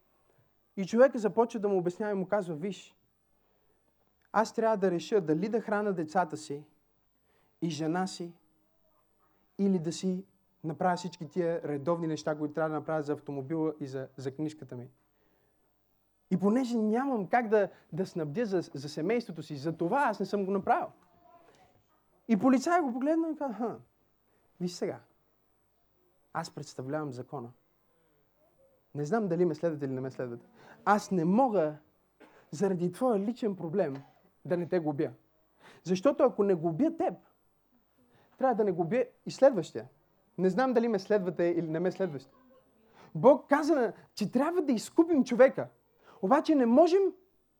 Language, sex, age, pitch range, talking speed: Bulgarian, male, 30-49, 165-260 Hz, 150 wpm